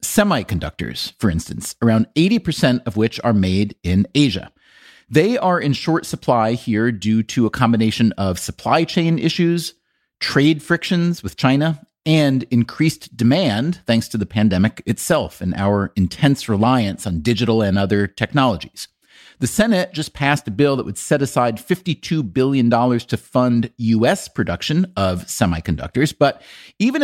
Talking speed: 145 wpm